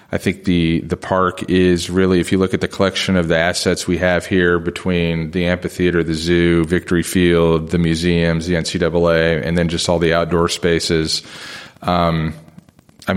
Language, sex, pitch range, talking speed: English, male, 80-90 Hz, 180 wpm